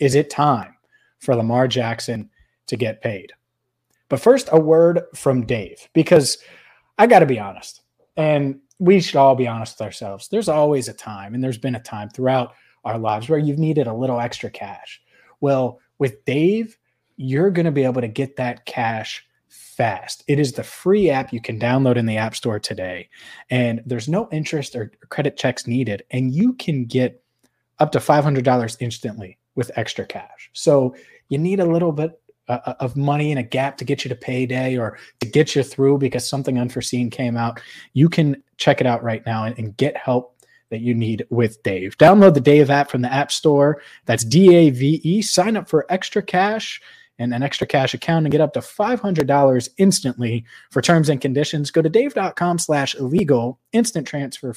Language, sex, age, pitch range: English, male, 30-49, 120-155 Hz